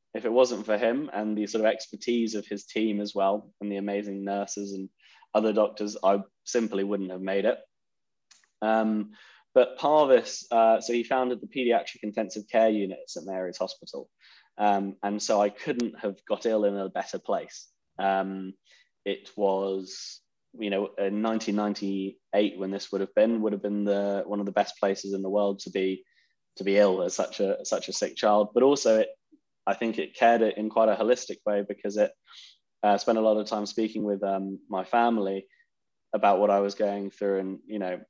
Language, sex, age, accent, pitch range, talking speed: English, male, 10-29, British, 95-110 Hz, 195 wpm